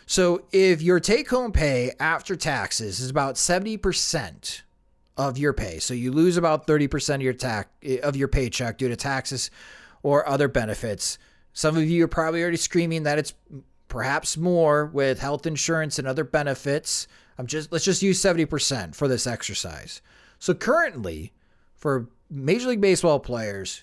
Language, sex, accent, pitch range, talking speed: English, male, American, 130-170 Hz, 165 wpm